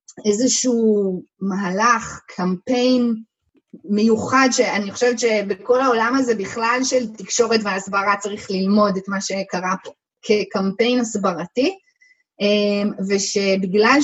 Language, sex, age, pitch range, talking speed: Hebrew, female, 20-39, 200-255 Hz, 95 wpm